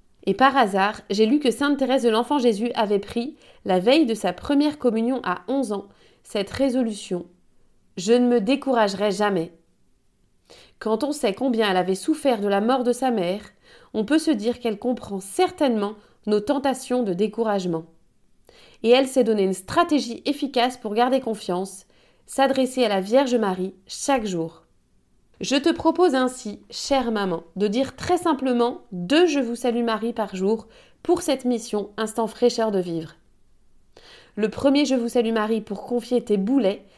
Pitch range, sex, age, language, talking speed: 205-270 Hz, female, 30-49, French, 165 wpm